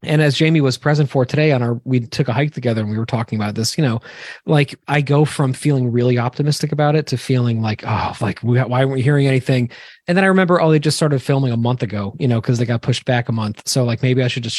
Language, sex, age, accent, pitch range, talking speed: English, male, 20-39, American, 125-170 Hz, 285 wpm